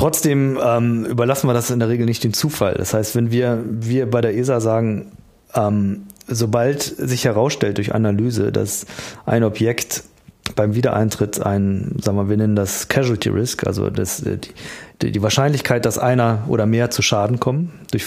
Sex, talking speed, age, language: male, 175 wpm, 40-59, German